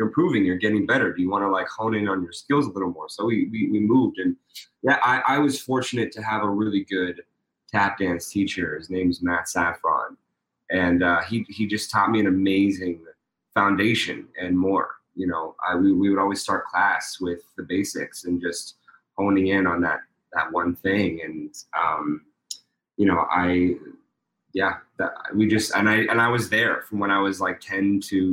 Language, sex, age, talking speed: English, male, 20-39, 205 wpm